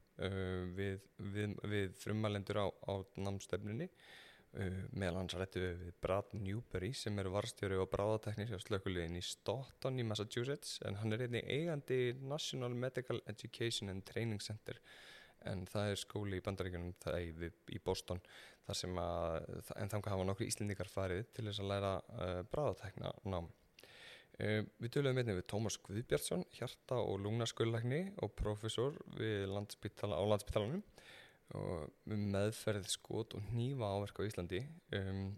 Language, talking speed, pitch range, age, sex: English, 150 wpm, 95-110 Hz, 20-39, male